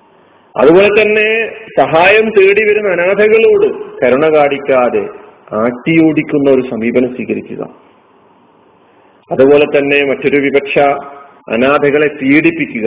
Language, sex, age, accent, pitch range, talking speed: Malayalam, male, 40-59, native, 135-175 Hz, 80 wpm